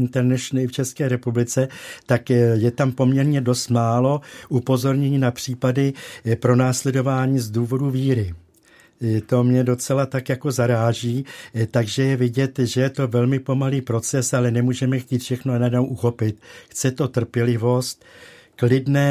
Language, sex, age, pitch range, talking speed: Czech, male, 60-79, 120-130 Hz, 135 wpm